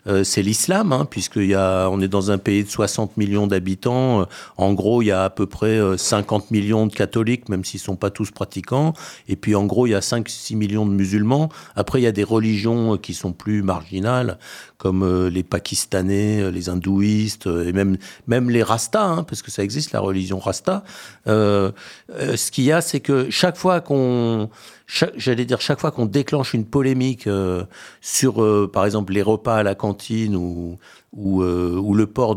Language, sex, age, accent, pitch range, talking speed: French, male, 50-69, French, 100-125 Hz, 200 wpm